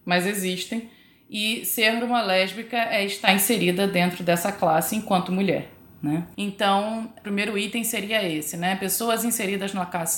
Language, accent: Portuguese, Brazilian